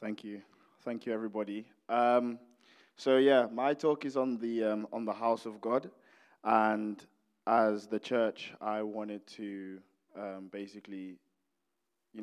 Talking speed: 140 wpm